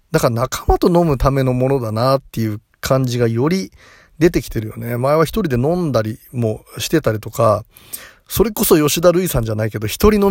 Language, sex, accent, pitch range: Japanese, male, native, 110-155 Hz